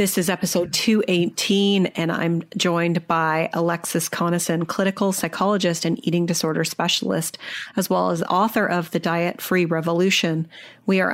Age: 30-49